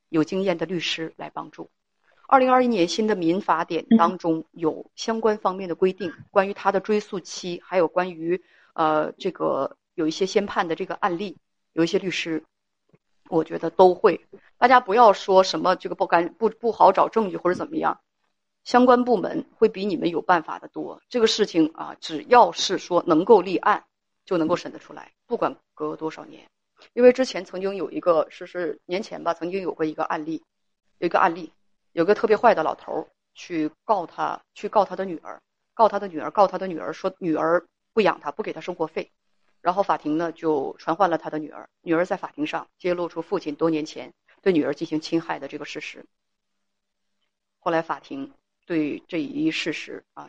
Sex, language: female, Chinese